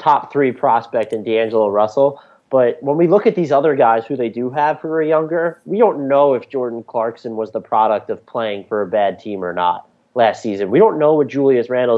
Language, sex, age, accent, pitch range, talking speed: English, male, 30-49, American, 115-140 Hz, 230 wpm